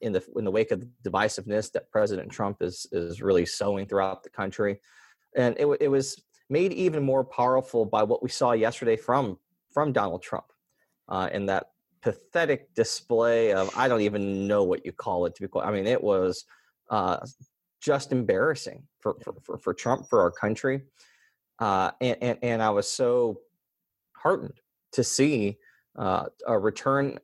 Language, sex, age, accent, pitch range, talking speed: English, male, 30-49, American, 95-135 Hz, 175 wpm